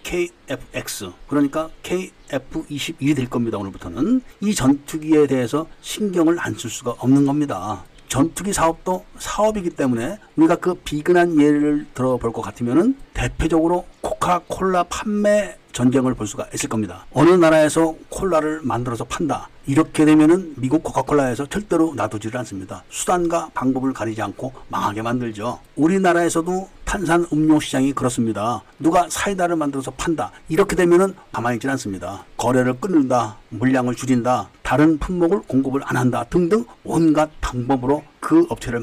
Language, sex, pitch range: Korean, male, 125-170 Hz